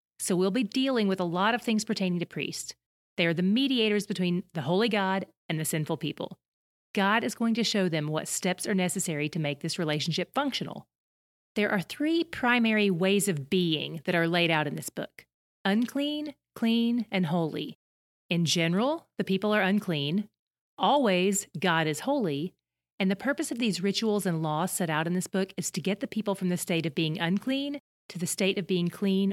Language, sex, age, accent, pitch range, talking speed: English, female, 30-49, American, 170-220 Hz, 200 wpm